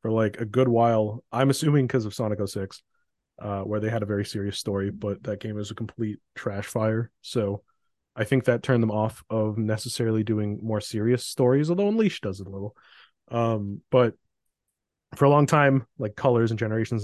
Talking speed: 195 wpm